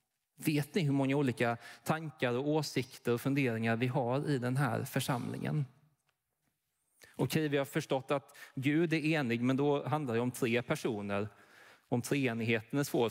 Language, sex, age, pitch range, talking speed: Swedish, male, 30-49, 120-150 Hz, 170 wpm